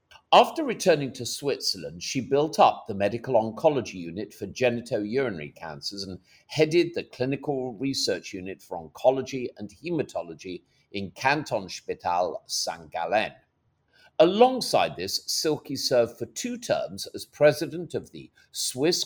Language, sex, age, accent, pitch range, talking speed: English, male, 50-69, British, 105-145 Hz, 125 wpm